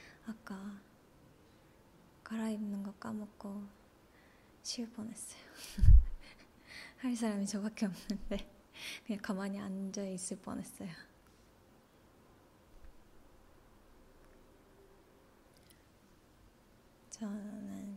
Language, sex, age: Korean, female, 20-39